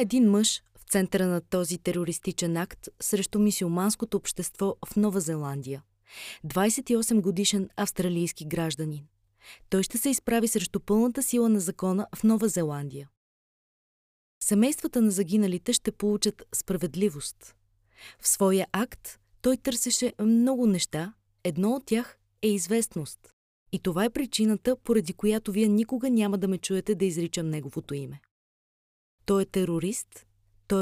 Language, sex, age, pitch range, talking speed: Bulgarian, female, 20-39, 160-220 Hz, 130 wpm